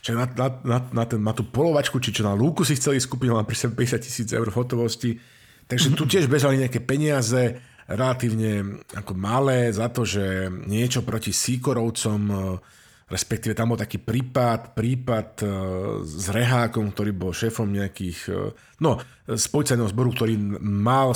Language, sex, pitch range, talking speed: Slovak, male, 110-130 Hz, 150 wpm